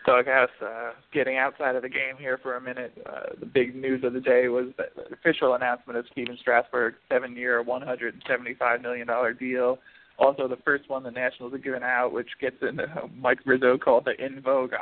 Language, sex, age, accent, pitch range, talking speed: English, male, 20-39, American, 125-130 Hz, 200 wpm